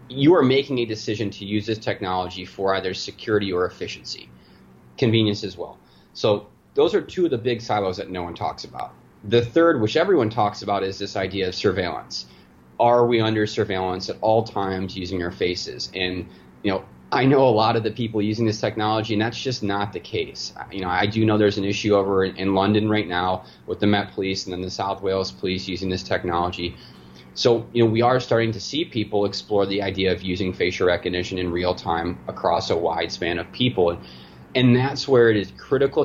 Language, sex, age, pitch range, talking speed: English, male, 30-49, 90-115 Hz, 210 wpm